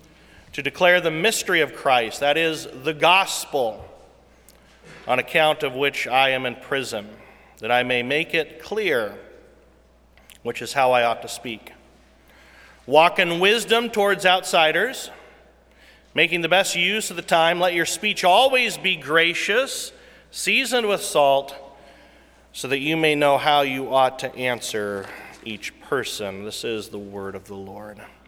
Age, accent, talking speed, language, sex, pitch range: 40-59, American, 150 wpm, English, male, 125-180 Hz